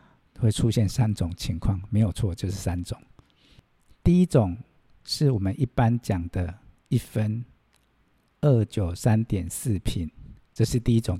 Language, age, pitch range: Chinese, 50-69, 95-120 Hz